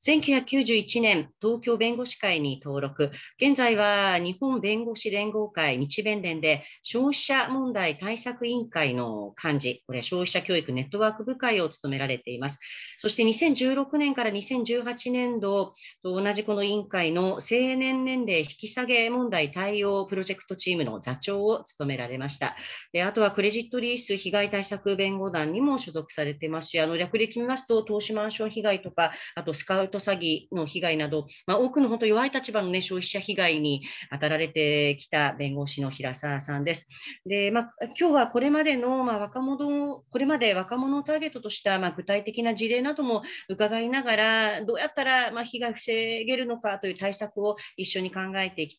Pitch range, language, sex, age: 160-235 Hz, Japanese, female, 40-59